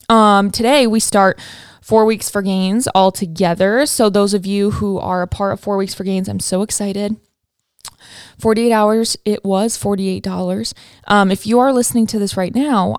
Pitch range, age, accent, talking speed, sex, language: 185-220 Hz, 20-39, American, 180 wpm, female, English